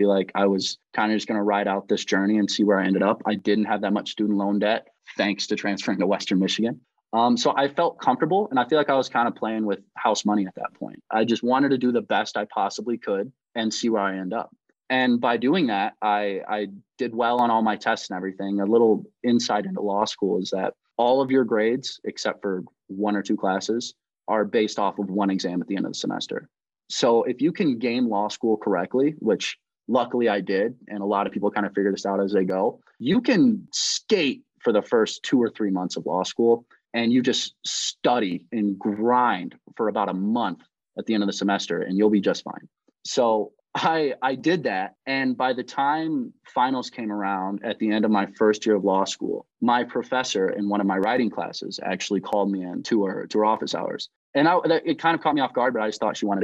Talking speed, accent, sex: 240 wpm, American, male